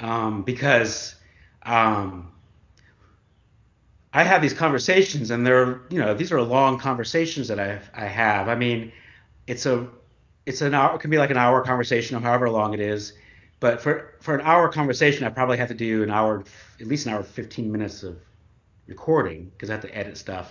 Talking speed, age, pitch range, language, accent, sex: 195 wpm, 30-49, 105-135 Hz, English, American, male